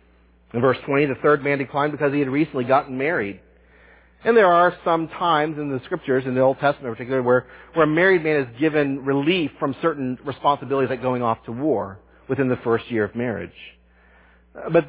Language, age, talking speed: English, 40-59, 200 wpm